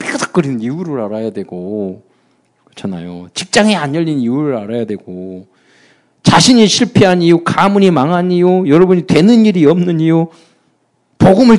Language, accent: Korean, native